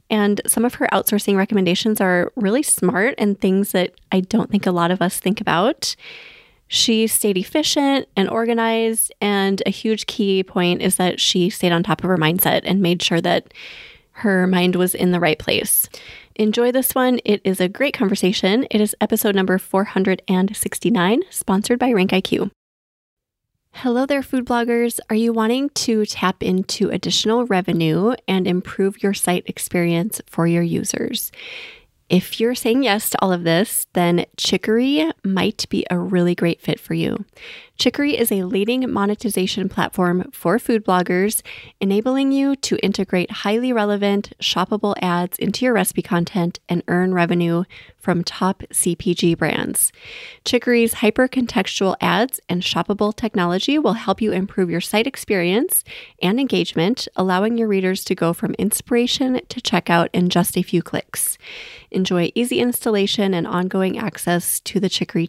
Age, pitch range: 20-39, 180-230 Hz